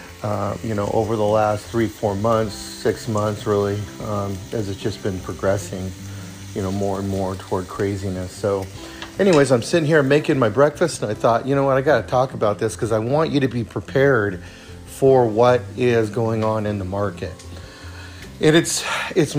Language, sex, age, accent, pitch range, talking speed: English, male, 40-59, American, 105-135 Hz, 195 wpm